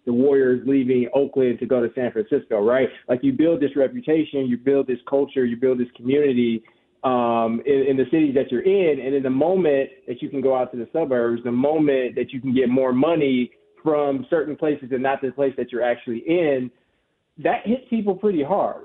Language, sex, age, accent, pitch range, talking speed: English, male, 20-39, American, 125-150 Hz, 215 wpm